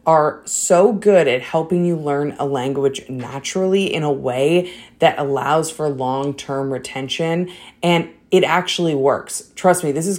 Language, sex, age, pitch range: English, female, 20-39, 140-180 Hz